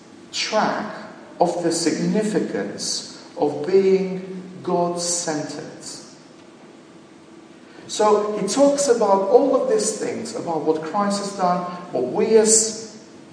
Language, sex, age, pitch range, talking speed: English, male, 50-69, 150-215 Hz, 115 wpm